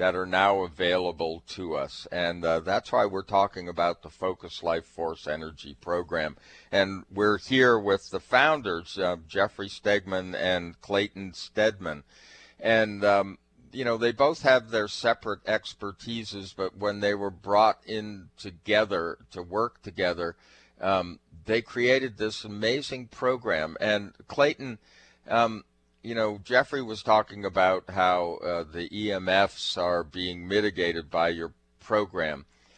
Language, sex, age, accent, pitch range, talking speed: English, male, 50-69, American, 85-105 Hz, 140 wpm